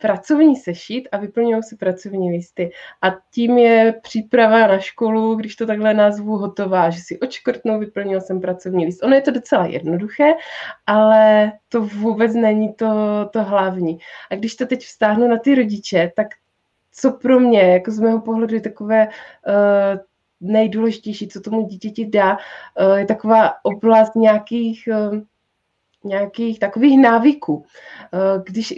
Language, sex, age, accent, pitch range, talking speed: Czech, female, 20-39, native, 205-240 Hz, 150 wpm